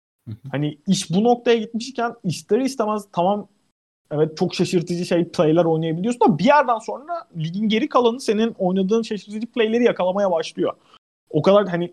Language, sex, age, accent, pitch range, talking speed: Turkish, male, 30-49, native, 155-220 Hz, 150 wpm